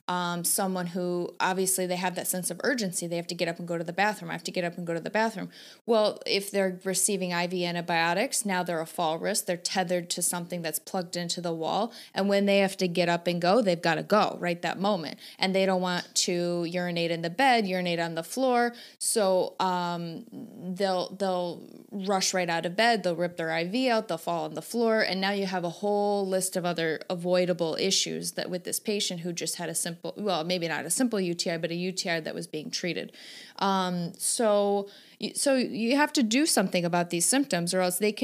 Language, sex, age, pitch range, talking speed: English, female, 30-49, 175-210 Hz, 225 wpm